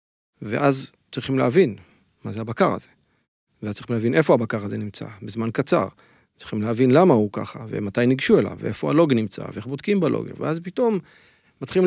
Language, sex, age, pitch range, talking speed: English, male, 40-59, 120-155 Hz, 160 wpm